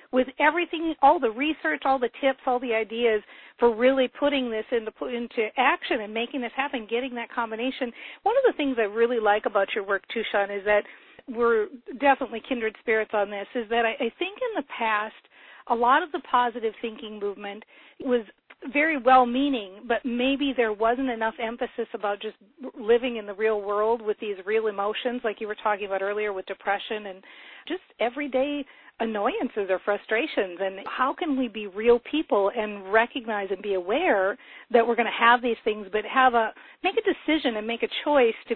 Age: 50-69